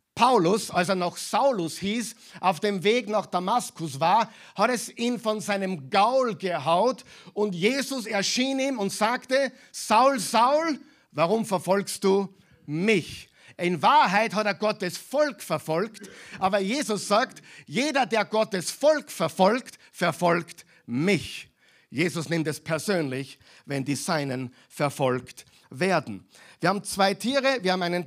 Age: 50-69